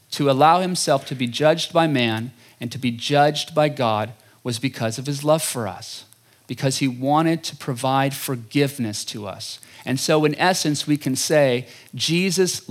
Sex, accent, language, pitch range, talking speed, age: male, American, English, 120-155 Hz, 175 wpm, 40-59